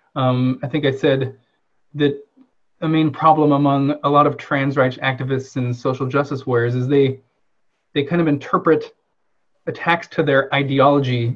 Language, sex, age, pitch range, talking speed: English, male, 30-49, 125-145 Hz, 160 wpm